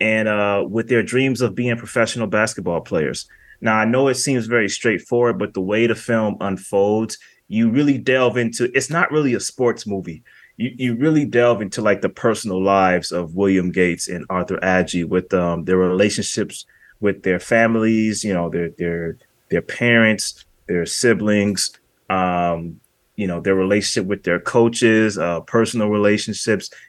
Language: English